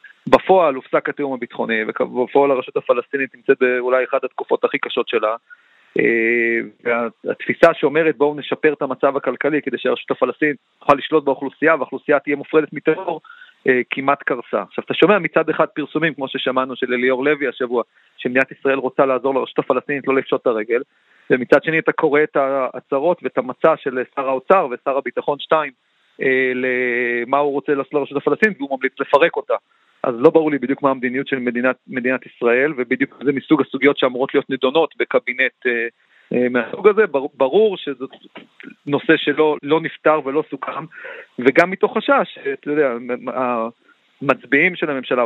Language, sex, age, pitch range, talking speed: Hebrew, male, 40-59, 130-160 Hz, 145 wpm